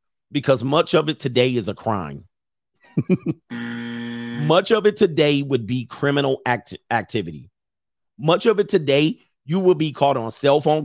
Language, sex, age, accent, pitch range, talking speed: English, male, 40-59, American, 120-155 Hz, 155 wpm